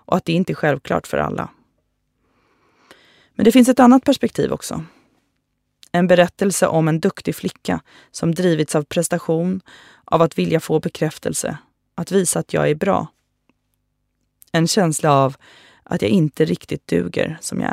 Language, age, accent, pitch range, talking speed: Swedish, 20-39, native, 150-185 Hz, 155 wpm